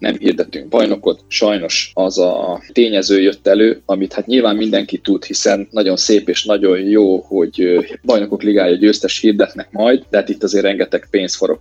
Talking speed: 165 wpm